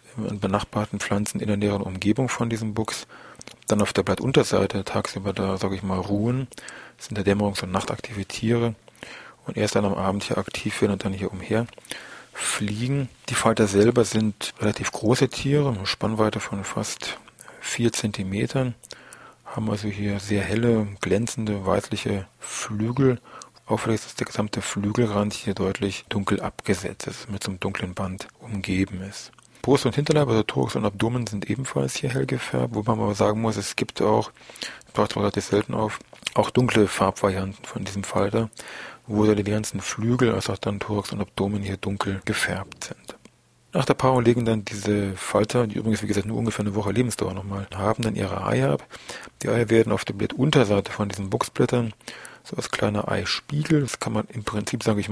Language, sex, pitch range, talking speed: German, male, 100-115 Hz, 185 wpm